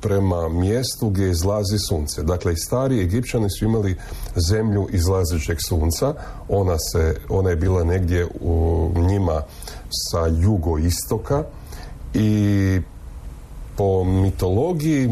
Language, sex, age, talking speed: Croatian, male, 40-59, 105 wpm